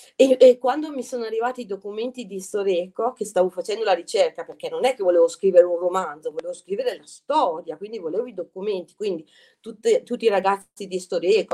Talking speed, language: 200 wpm, Italian